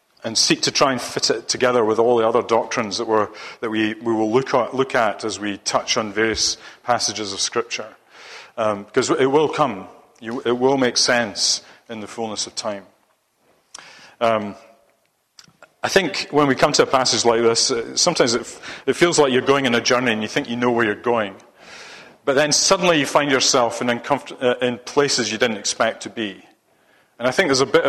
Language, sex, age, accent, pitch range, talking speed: English, male, 40-59, British, 110-130 Hz, 200 wpm